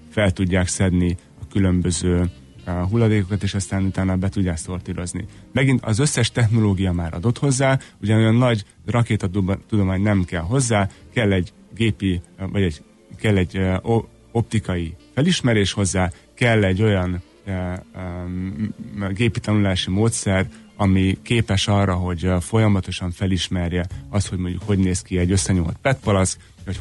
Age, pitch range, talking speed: 30-49, 90-110 Hz, 140 wpm